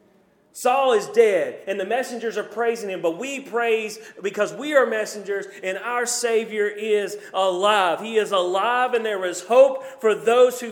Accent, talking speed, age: American, 175 wpm, 30-49